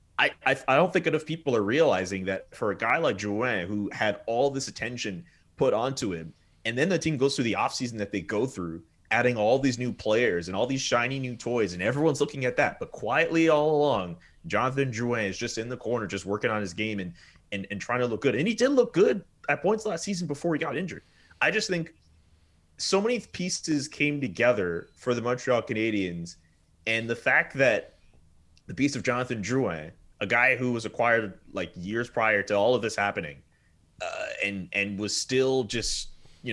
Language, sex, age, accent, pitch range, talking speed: English, male, 30-49, American, 95-135 Hz, 210 wpm